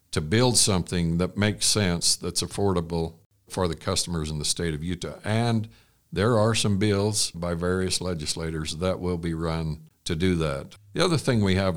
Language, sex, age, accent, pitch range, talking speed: English, male, 60-79, American, 80-95 Hz, 185 wpm